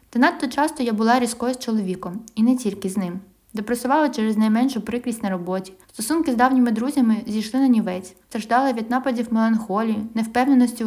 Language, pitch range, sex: Ukrainian, 205-245 Hz, female